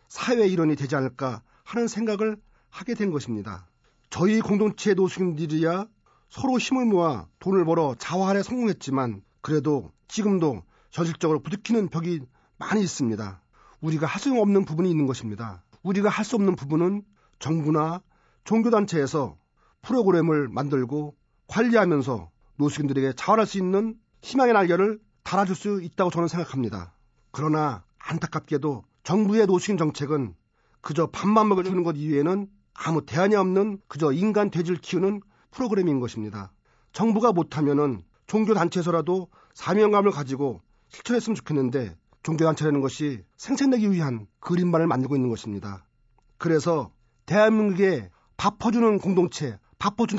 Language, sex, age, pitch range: Korean, male, 40-59, 135-200 Hz